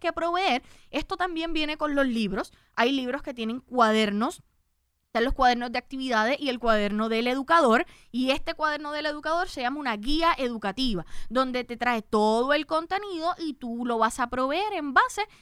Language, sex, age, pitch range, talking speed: Spanish, female, 20-39, 220-305 Hz, 185 wpm